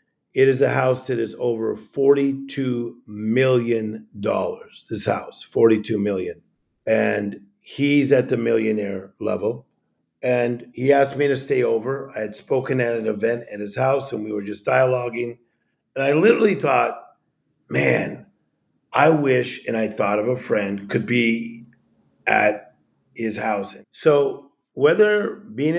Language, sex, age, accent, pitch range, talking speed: English, male, 50-69, American, 110-140 Hz, 140 wpm